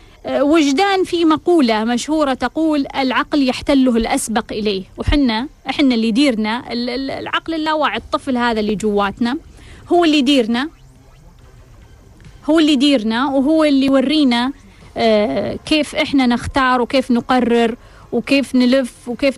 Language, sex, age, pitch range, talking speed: Arabic, female, 30-49, 240-285 Hz, 110 wpm